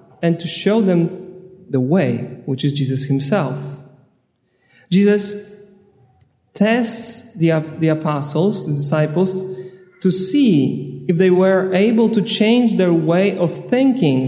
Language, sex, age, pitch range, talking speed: English, male, 40-59, 150-200 Hz, 120 wpm